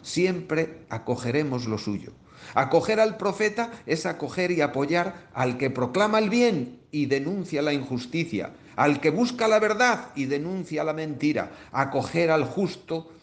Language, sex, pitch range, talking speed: Spanish, male, 125-190 Hz, 145 wpm